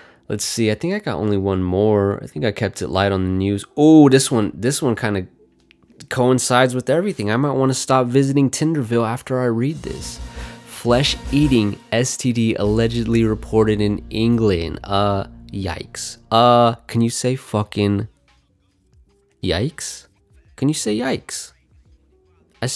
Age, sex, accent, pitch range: 20-39, male, American, 100-125 Hz